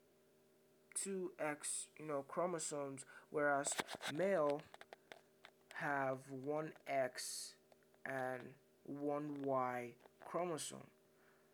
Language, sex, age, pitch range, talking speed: English, male, 20-39, 140-170 Hz, 55 wpm